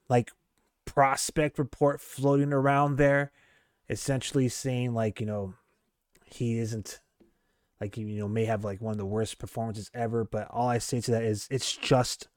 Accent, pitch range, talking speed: American, 115-140 Hz, 165 wpm